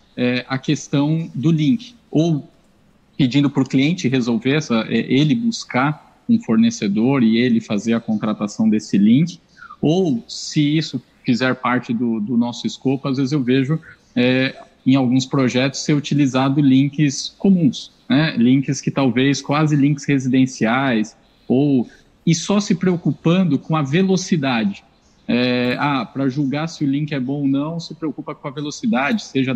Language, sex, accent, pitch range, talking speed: Portuguese, male, Brazilian, 130-175 Hz, 145 wpm